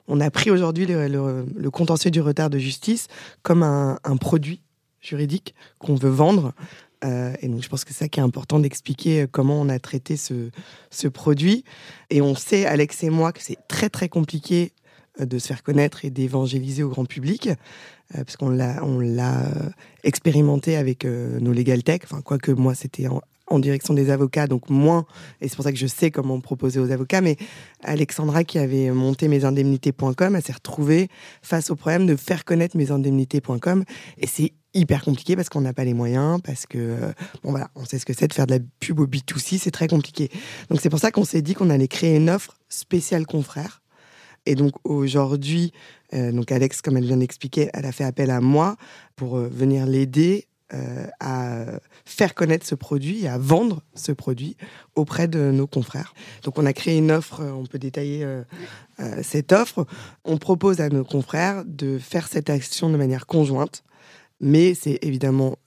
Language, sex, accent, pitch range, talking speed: French, female, French, 135-165 Hz, 195 wpm